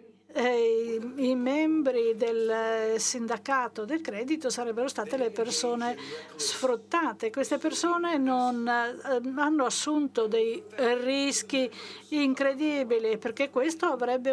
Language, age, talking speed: Italian, 50-69, 95 wpm